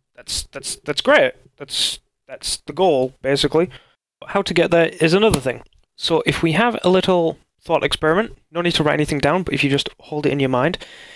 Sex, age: male, 20-39